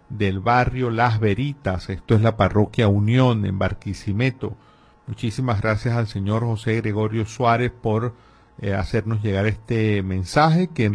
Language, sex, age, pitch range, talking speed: Spanish, male, 50-69, 105-135 Hz, 140 wpm